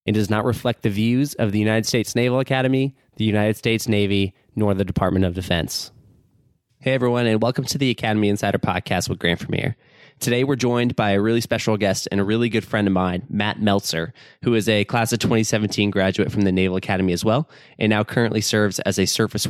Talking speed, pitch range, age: 215 wpm, 105-125 Hz, 20-39